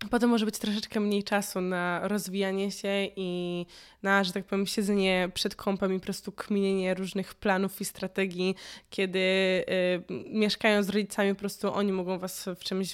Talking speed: 170 wpm